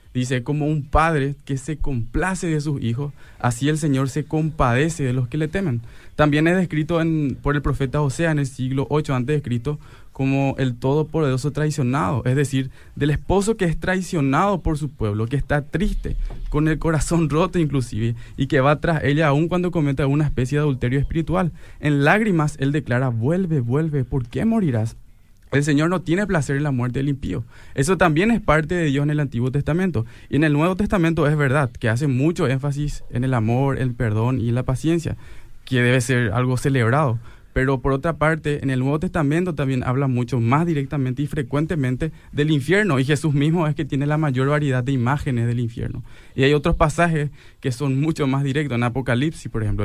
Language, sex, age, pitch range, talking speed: Spanish, male, 20-39, 130-155 Hz, 200 wpm